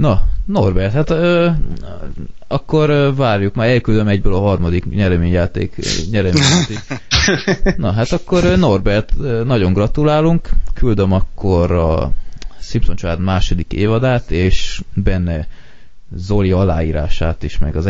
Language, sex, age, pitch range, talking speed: Hungarian, male, 20-39, 85-110 Hz, 115 wpm